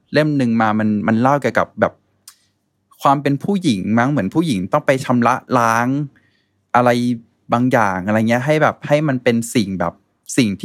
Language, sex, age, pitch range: Thai, male, 20-39, 105-130 Hz